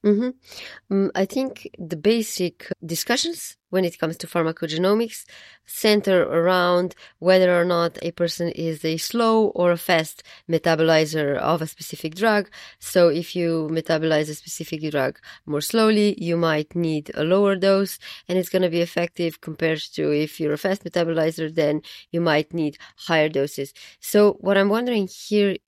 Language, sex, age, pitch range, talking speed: English, female, 20-39, 160-195 Hz, 160 wpm